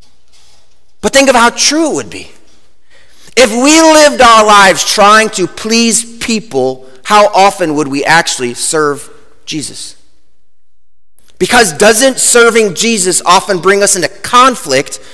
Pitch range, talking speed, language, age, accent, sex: 195-245 Hz, 130 wpm, English, 30-49, American, male